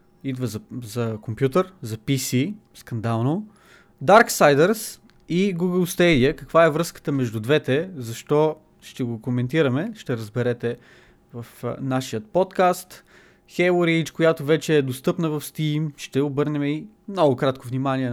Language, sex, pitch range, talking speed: Bulgarian, male, 130-175 Hz, 125 wpm